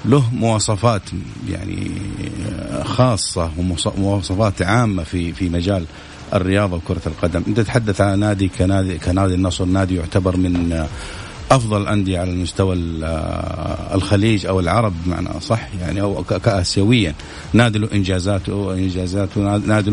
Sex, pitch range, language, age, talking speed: male, 90-110 Hz, English, 50-69, 110 wpm